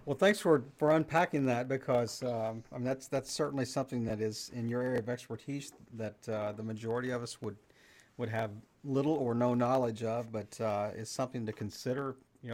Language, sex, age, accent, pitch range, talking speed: English, male, 50-69, American, 105-125 Hz, 200 wpm